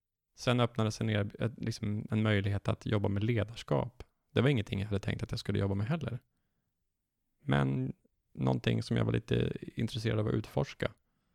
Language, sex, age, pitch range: Swedish, male, 20-39, 105-120 Hz